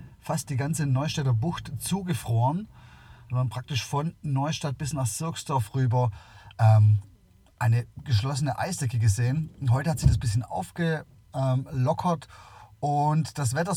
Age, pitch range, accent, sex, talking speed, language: 30-49, 110-140 Hz, German, male, 135 wpm, German